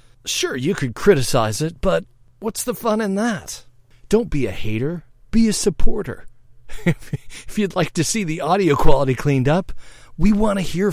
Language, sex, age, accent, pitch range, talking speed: English, male, 40-59, American, 120-160 Hz, 175 wpm